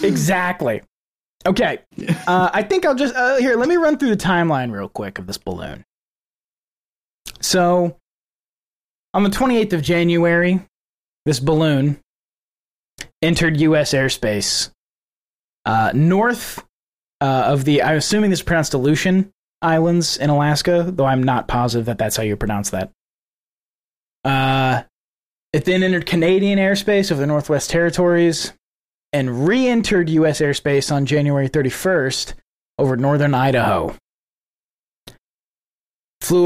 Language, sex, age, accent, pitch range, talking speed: English, male, 20-39, American, 135-175 Hz, 125 wpm